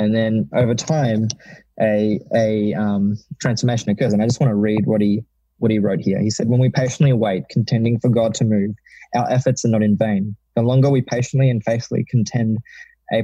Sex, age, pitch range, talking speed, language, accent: male, 20-39, 110-130 Hz, 205 wpm, English, Australian